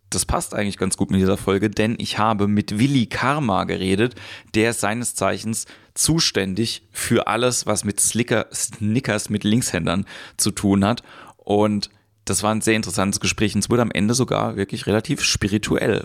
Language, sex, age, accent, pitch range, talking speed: German, male, 30-49, German, 95-110 Hz, 175 wpm